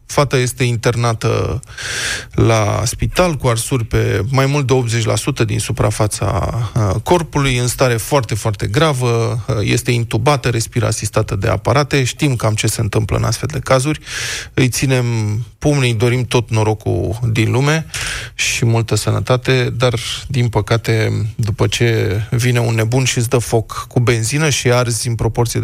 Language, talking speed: Romanian, 150 wpm